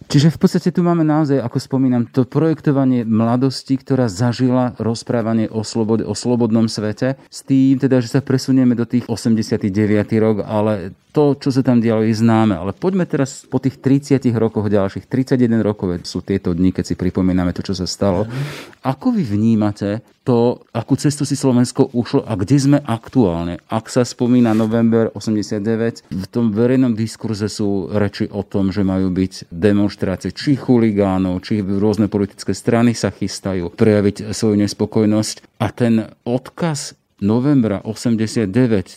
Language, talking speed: Slovak, 160 wpm